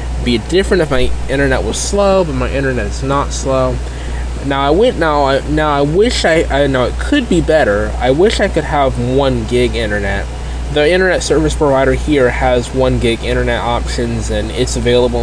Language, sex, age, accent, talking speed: English, male, 20-39, American, 195 wpm